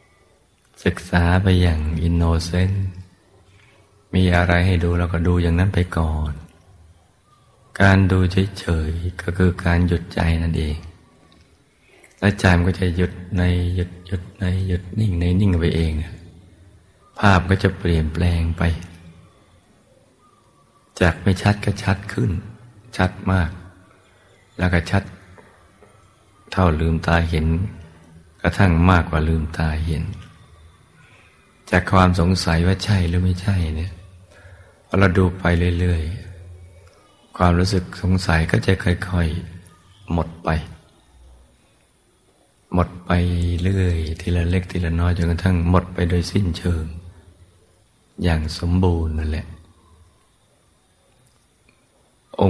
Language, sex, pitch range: Thai, male, 85-95 Hz